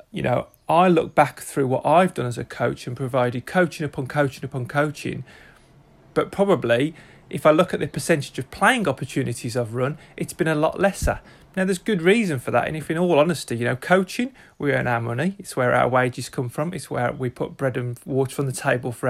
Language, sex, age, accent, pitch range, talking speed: English, male, 30-49, British, 125-150 Hz, 225 wpm